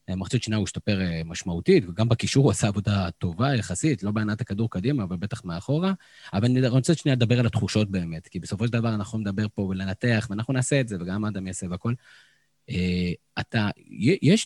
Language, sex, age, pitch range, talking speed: Hebrew, male, 20-39, 105-140 Hz, 185 wpm